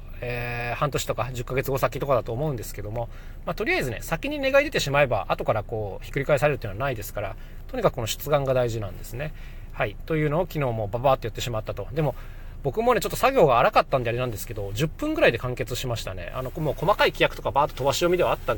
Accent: native